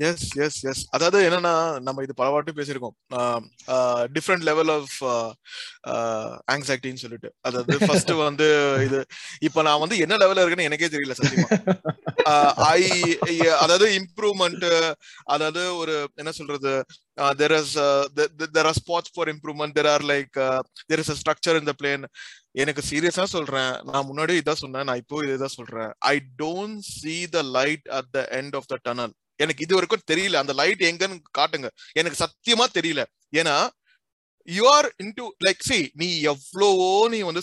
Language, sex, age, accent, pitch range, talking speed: Tamil, male, 20-39, native, 140-170 Hz, 45 wpm